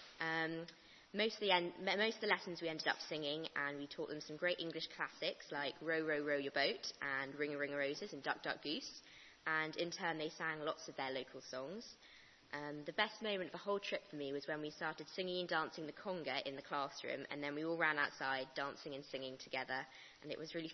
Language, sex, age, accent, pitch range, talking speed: English, female, 20-39, British, 145-175 Hz, 240 wpm